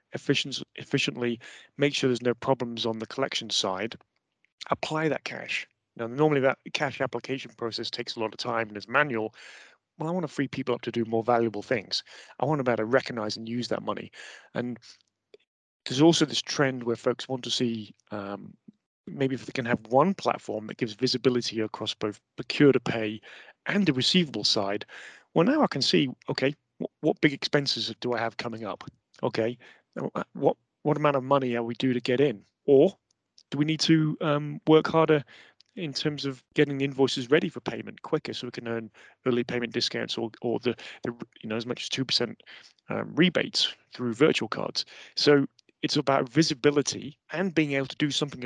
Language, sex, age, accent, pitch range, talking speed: English, male, 30-49, British, 120-145 Hz, 190 wpm